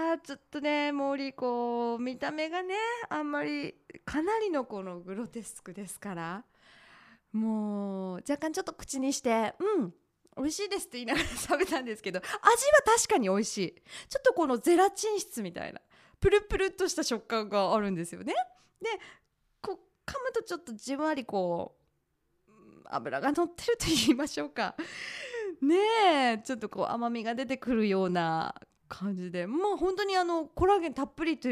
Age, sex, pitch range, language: 20-39, female, 210-335 Hz, Japanese